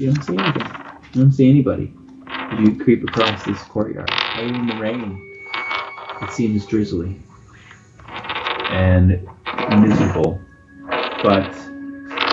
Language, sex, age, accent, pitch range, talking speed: English, male, 30-49, American, 110-150 Hz, 105 wpm